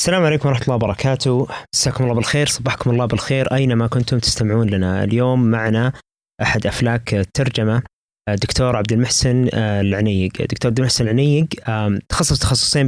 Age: 20-39